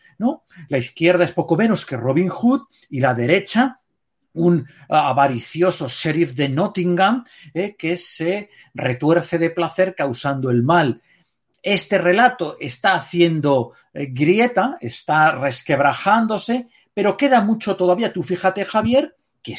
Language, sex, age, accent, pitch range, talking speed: Spanish, male, 40-59, Spanish, 150-250 Hz, 125 wpm